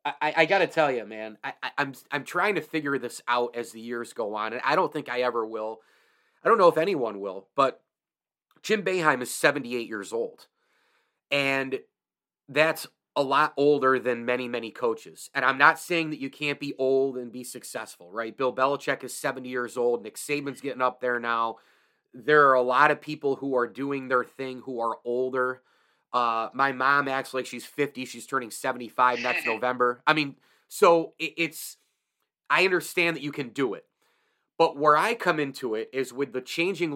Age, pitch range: 30-49, 125-155 Hz